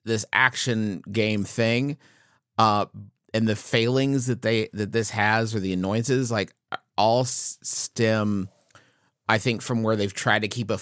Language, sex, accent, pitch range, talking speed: English, male, American, 95-125 Hz, 155 wpm